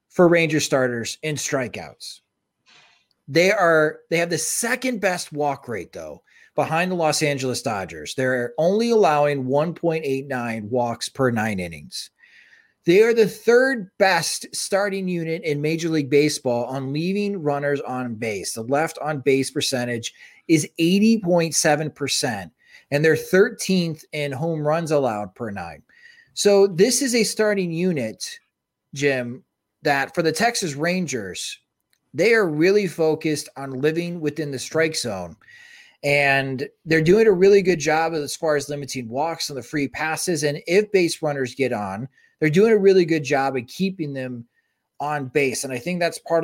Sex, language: male, English